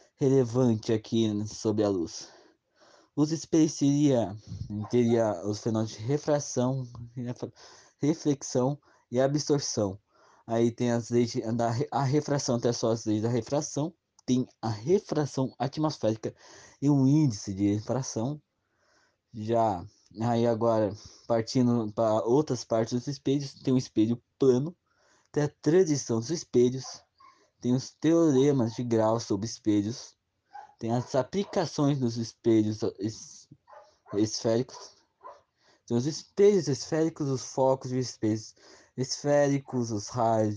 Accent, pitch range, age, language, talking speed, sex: Brazilian, 110-140 Hz, 20-39, Portuguese, 125 wpm, male